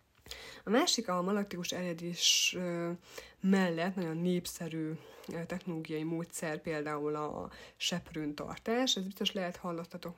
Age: 30-49